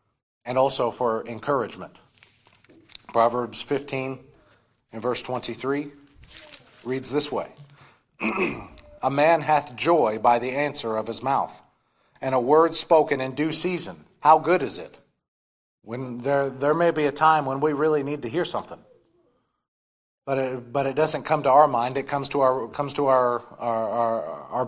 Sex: male